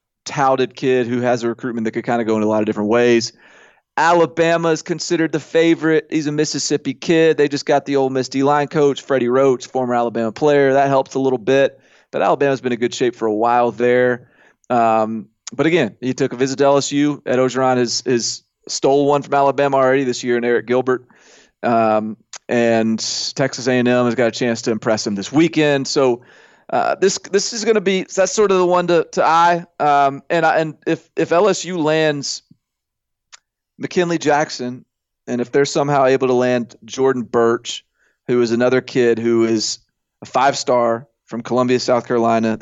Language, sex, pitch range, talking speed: English, male, 115-140 Hz, 195 wpm